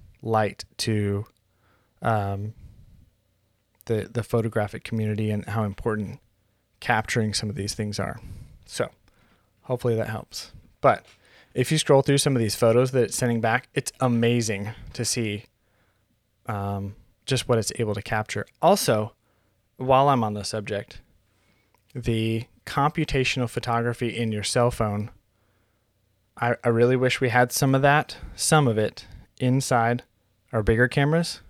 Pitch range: 105-120 Hz